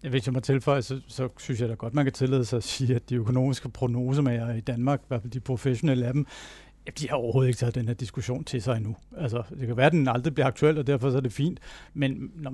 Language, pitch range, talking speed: Danish, 125-150 Hz, 270 wpm